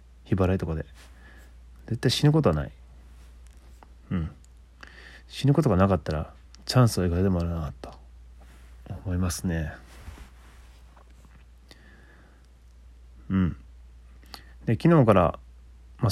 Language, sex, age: Japanese, male, 30-49